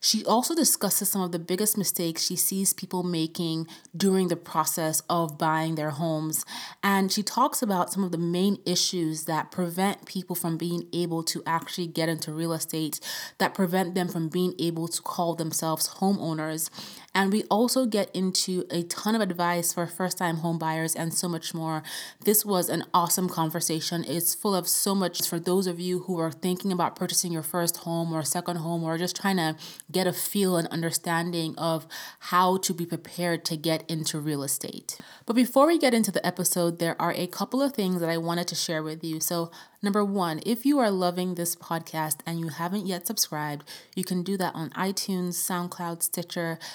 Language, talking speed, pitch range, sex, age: English, 195 wpm, 165-185 Hz, female, 20-39